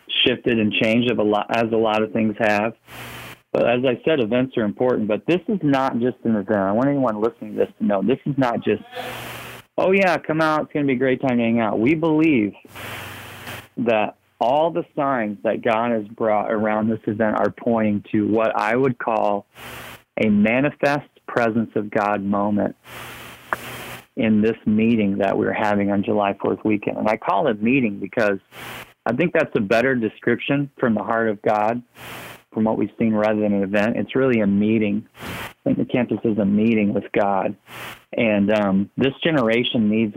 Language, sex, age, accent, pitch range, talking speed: English, male, 40-59, American, 105-120 Hz, 195 wpm